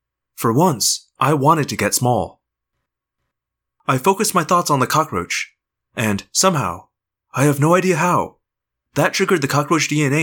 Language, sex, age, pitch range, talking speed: English, male, 20-39, 110-170 Hz, 155 wpm